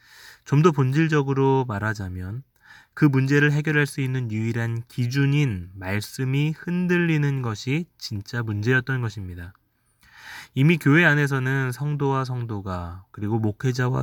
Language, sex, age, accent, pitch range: Korean, male, 20-39, native, 110-140 Hz